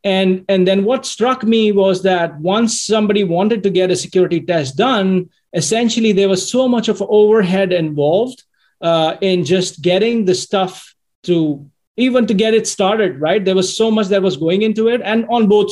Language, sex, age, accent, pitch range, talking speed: English, male, 30-49, Indian, 165-210 Hz, 190 wpm